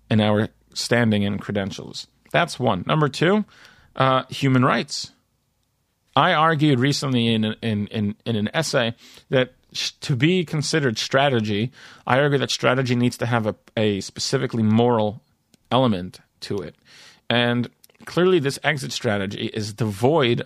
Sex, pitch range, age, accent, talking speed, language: male, 110-140 Hz, 40-59, American, 140 wpm, English